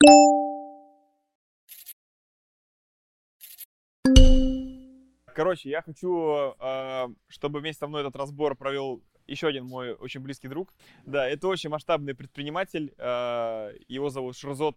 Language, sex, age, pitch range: Russian, male, 20-39, 130-155 Hz